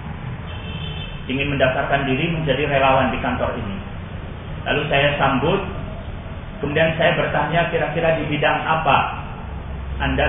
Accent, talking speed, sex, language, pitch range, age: native, 110 wpm, male, Indonesian, 125-145 Hz, 40-59